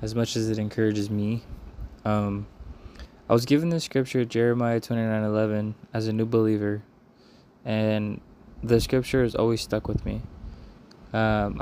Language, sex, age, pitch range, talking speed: English, male, 20-39, 105-120 Hz, 150 wpm